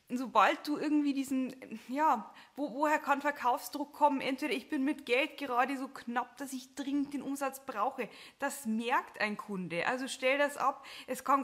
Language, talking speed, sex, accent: German, 180 wpm, female, German